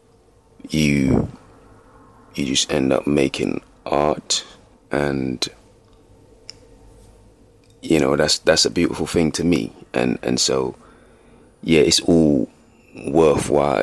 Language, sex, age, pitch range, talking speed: English, male, 20-39, 70-80 Hz, 105 wpm